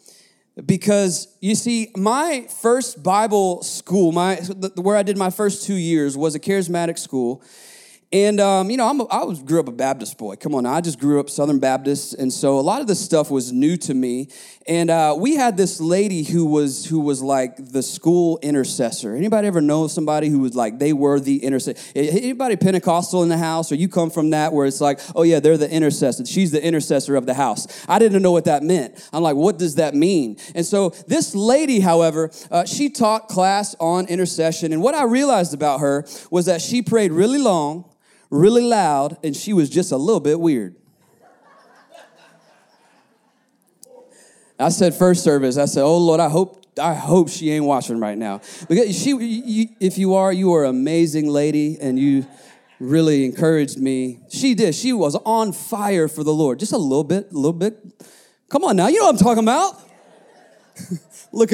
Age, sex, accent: 30-49, male, American